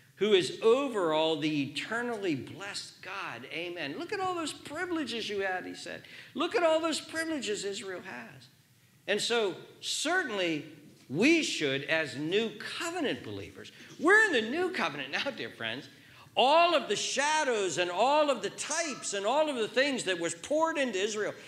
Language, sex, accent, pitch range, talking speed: English, male, American, 210-330 Hz, 170 wpm